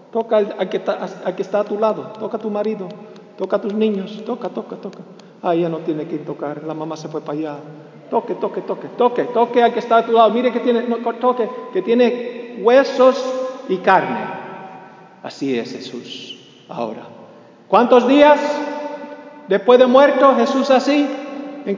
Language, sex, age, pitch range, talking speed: English, male, 50-69, 200-275 Hz, 185 wpm